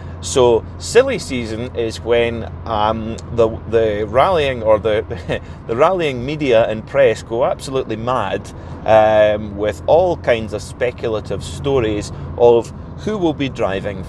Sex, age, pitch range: male, 30-49, 95-130 Hz